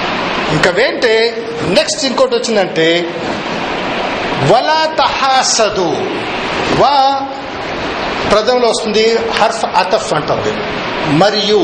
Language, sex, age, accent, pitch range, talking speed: Telugu, male, 50-69, native, 200-275 Hz, 55 wpm